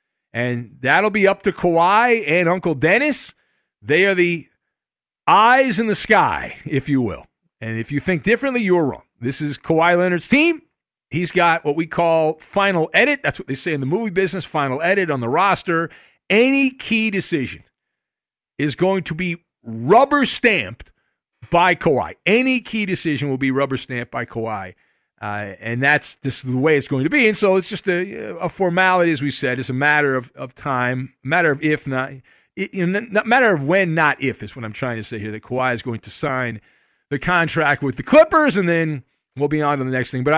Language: English